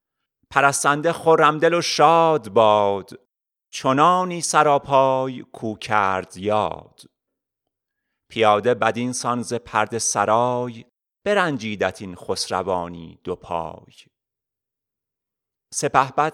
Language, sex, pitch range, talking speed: Persian, male, 110-145 Hz, 80 wpm